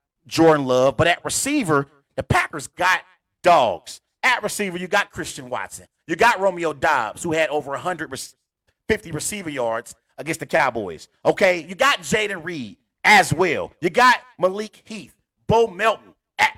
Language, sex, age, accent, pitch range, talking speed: English, male, 40-59, American, 155-240 Hz, 150 wpm